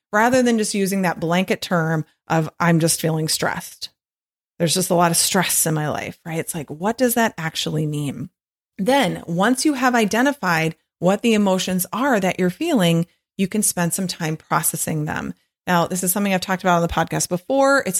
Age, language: 30-49, English